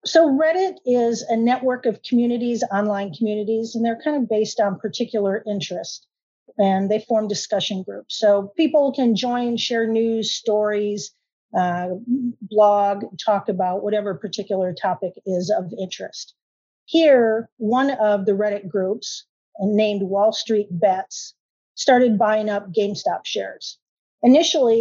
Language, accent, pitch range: English, American, 200-235 Hz